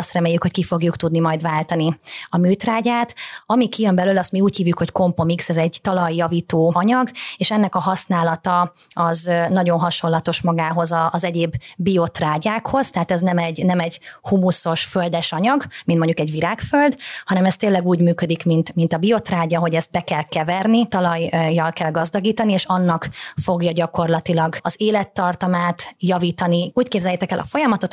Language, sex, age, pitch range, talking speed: Hungarian, female, 30-49, 170-195 Hz, 165 wpm